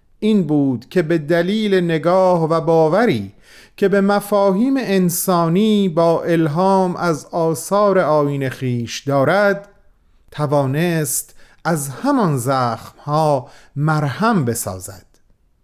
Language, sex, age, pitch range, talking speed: Persian, male, 40-59, 140-185 Hz, 95 wpm